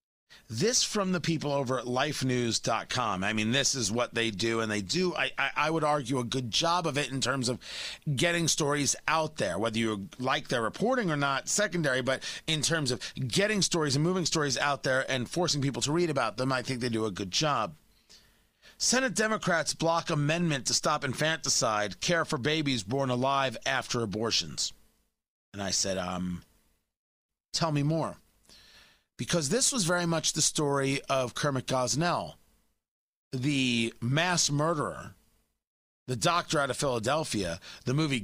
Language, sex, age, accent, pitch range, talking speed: English, male, 40-59, American, 130-170 Hz, 170 wpm